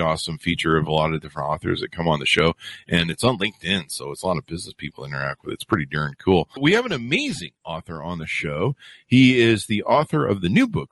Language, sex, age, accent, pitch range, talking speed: English, male, 50-69, American, 85-135 Hz, 255 wpm